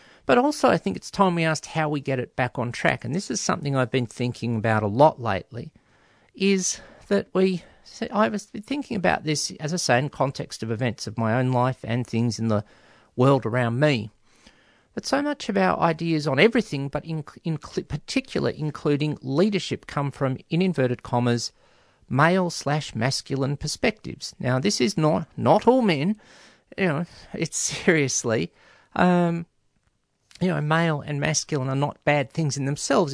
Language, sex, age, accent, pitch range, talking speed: English, male, 50-69, Australian, 120-180 Hz, 170 wpm